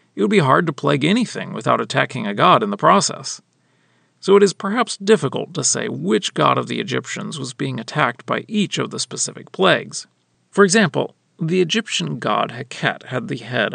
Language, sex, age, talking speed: English, male, 40-59, 190 wpm